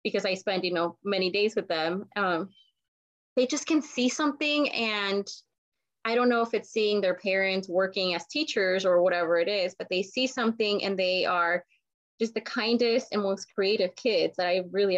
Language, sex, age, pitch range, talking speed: English, female, 20-39, 180-235 Hz, 190 wpm